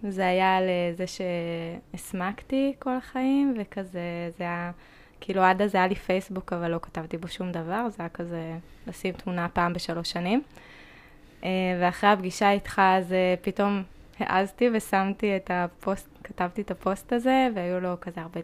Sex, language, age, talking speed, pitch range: female, Hebrew, 20-39, 150 wpm, 180-200 Hz